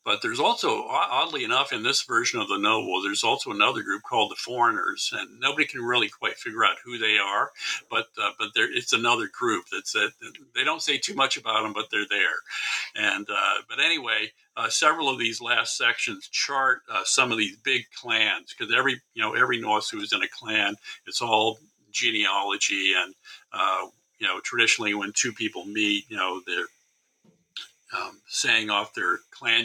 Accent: American